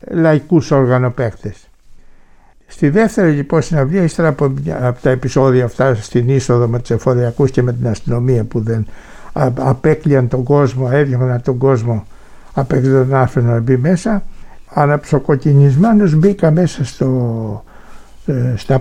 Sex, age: male, 60-79